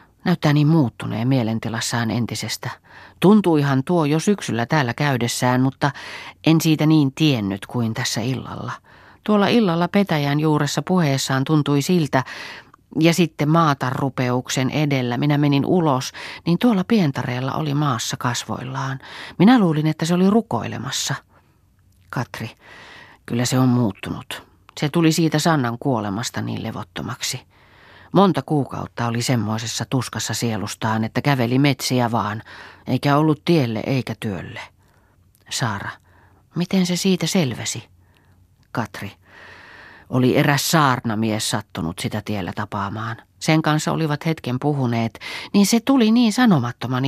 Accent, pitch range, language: native, 115-160 Hz, Finnish